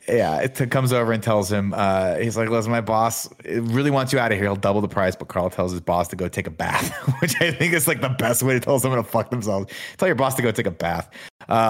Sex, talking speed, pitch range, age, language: male, 285 wpm, 100-125 Hz, 30-49, English